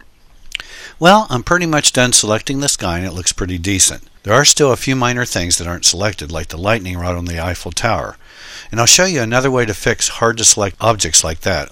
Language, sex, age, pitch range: English, male, 60-79, 90-115 Hz